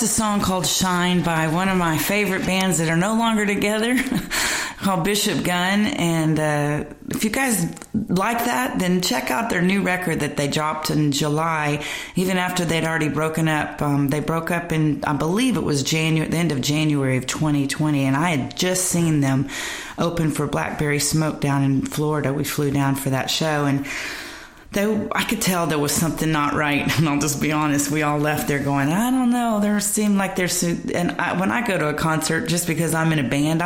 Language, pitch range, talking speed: English, 150-185 Hz, 210 wpm